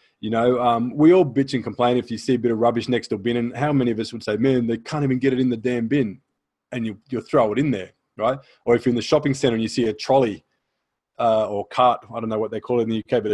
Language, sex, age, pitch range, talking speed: English, male, 20-39, 115-135 Hz, 315 wpm